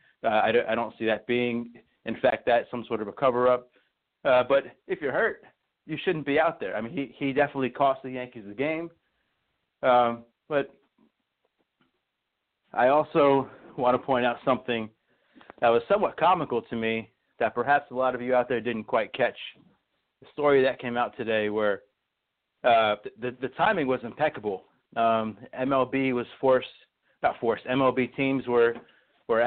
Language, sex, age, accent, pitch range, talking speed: English, male, 30-49, American, 120-140 Hz, 175 wpm